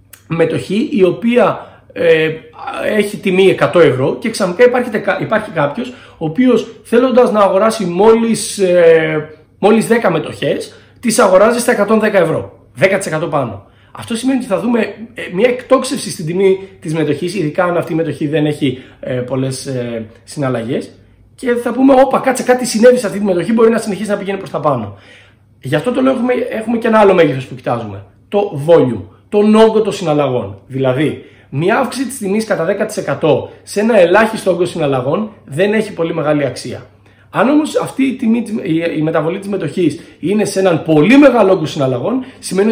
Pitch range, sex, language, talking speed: 150-225 Hz, male, Greek, 175 wpm